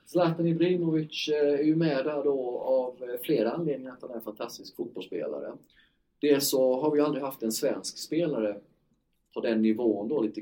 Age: 30-49